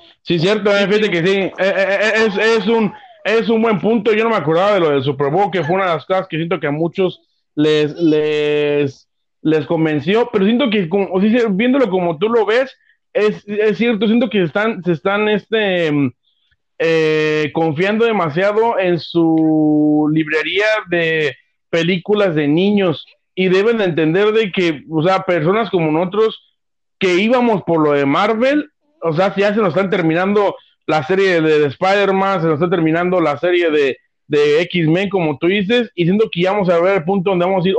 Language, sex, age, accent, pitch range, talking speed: Spanish, male, 40-59, Mexican, 160-215 Hz, 195 wpm